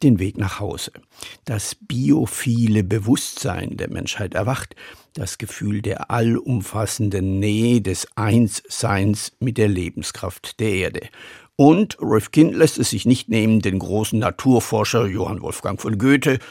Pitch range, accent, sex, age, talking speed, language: 105-130 Hz, German, male, 50-69, 130 wpm, German